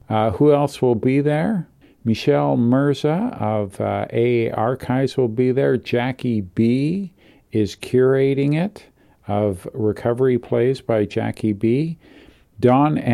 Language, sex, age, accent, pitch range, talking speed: English, male, 50-69, American, 105-130 Hz, 125 wpm